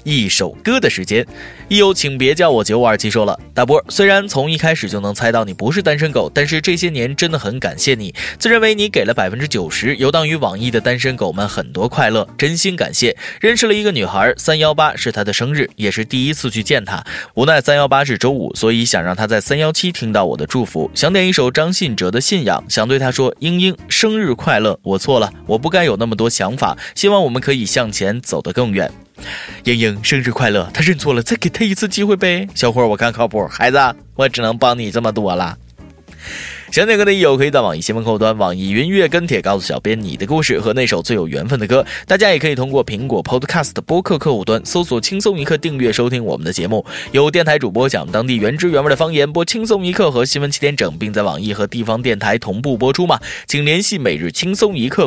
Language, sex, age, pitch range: Chinese, male, 20-39, 115-175 Hz